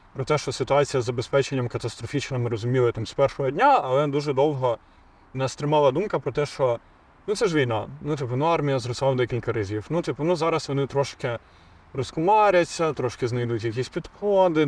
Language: Ukrainian